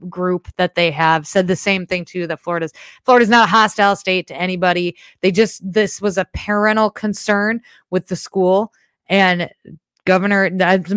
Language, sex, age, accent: English, female, 20-39, American